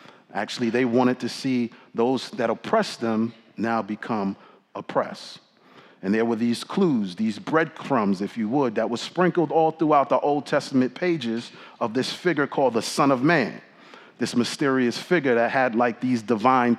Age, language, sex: 40-59, English, male